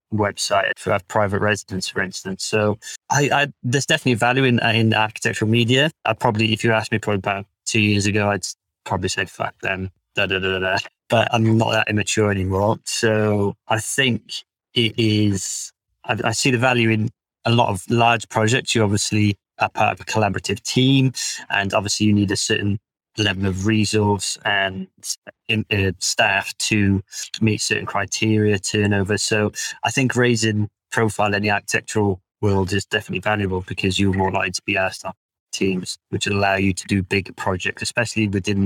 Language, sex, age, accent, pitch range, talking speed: English, male, 20-39, British, 100-115 Hz, 170 wpm